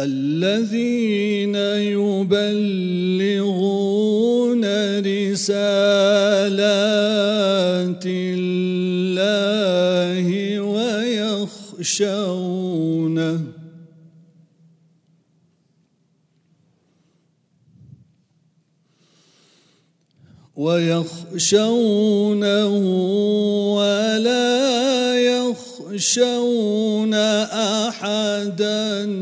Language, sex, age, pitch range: English, male, 40-59, 165-205 Hz